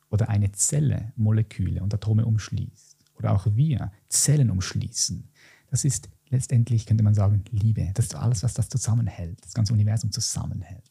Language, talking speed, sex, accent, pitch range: German, 160 wpm, male, German, 115-155 Hz